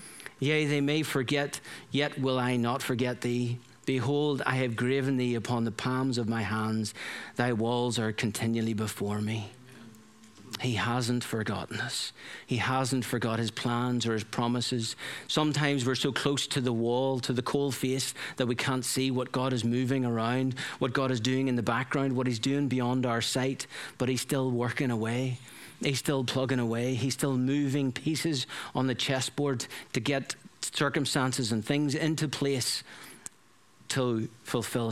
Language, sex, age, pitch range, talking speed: English, male, 40-59, 120-135 Hz, 165 wpm